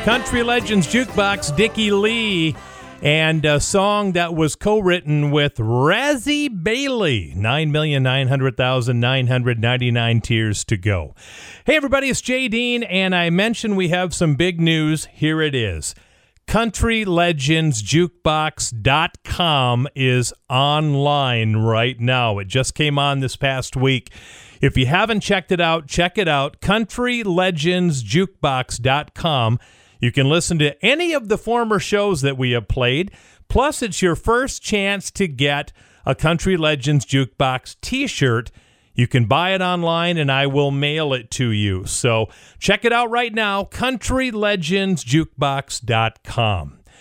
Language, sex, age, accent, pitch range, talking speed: English, male, 40-59, American, 130-195 Hz, 130 wpm